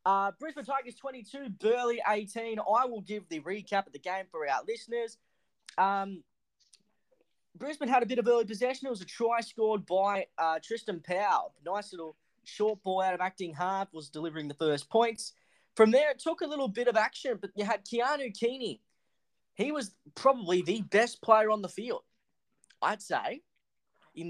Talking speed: 180 wpm